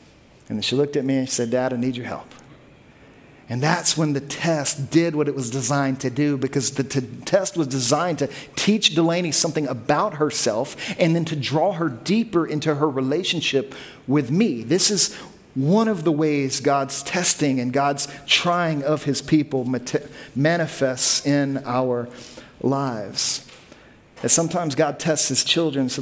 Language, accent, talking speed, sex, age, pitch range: English, American, 165 wpm, male, 40-59, 135-170 Hz